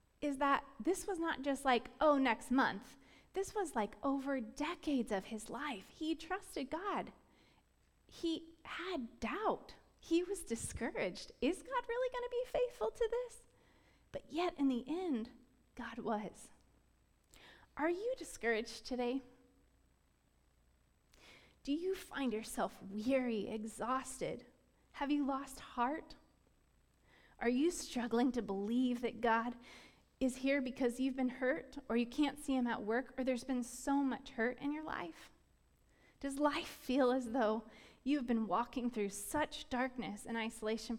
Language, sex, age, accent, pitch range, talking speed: English, female, 30-49, American, 230-290 Hz, 145 wpm